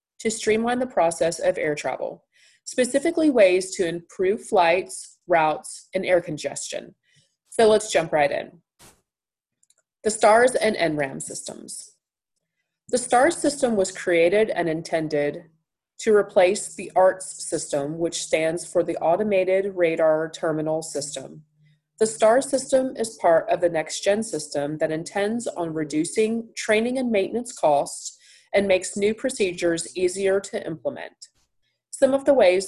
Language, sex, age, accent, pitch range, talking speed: English, female, 30-49, American, 160-215 Hz, 140 wpm